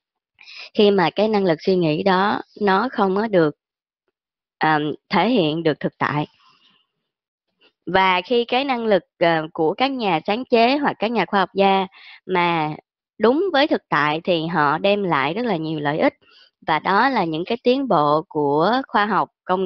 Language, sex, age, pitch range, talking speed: Vietnamese, male, 20-39, 165-225 Hz, 175 wpm